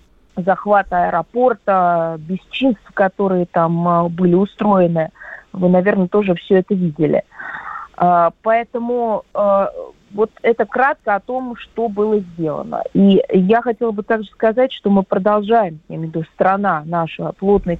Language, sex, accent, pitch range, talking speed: Russian, female, native, 175-220 Hz, 130 wpm